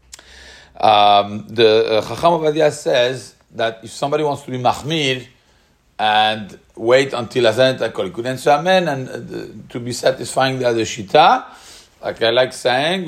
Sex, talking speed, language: male, 125 wpm, English